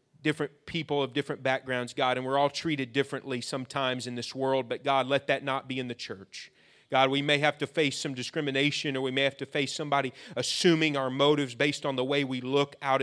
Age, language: 30-49, English